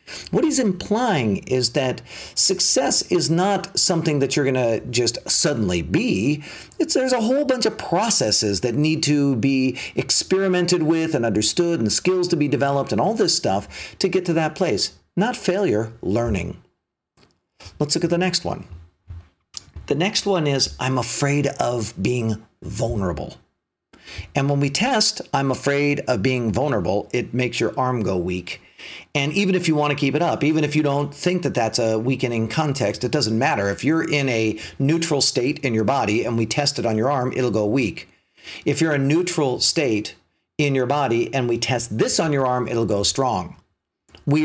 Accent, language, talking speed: American, English, 190 wpm